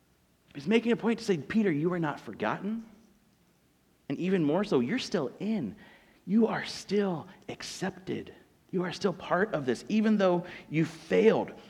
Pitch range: 150-220 Hz